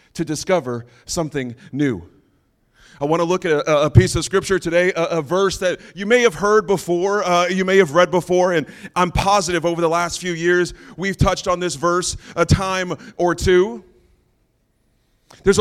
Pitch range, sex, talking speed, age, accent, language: 170-205 Hz, male, 180 wpm, 30-49, American, English